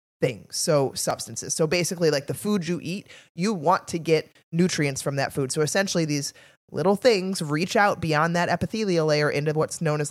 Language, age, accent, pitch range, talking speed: English, 20-39, American, 145-185 Hz, 195 wpm